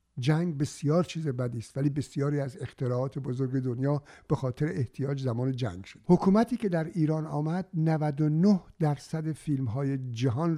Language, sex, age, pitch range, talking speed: Persian, male, 60-79, 125-155 Hz, 155 wpm